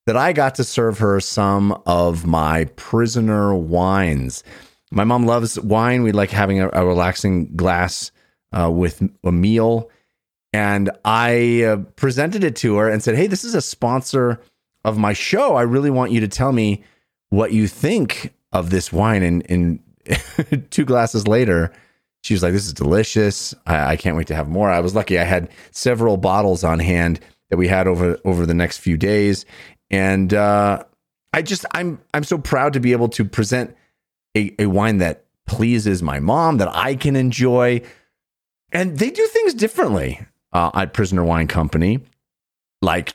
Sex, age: male, 30-49